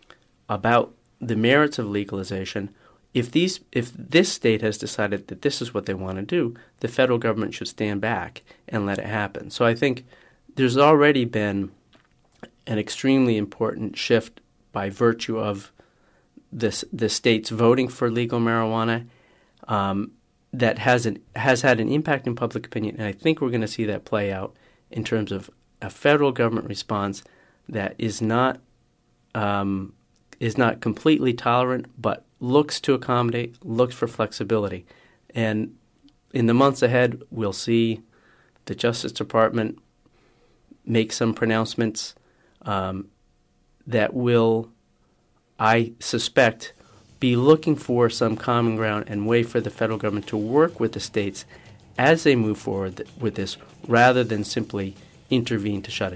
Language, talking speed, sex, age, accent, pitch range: English, 150 wpm, male, 40-59, American, 105-125 Hz